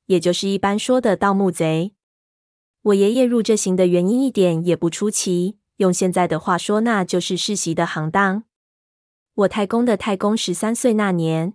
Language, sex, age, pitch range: Chinese, female, 20-39, 175-215 Hz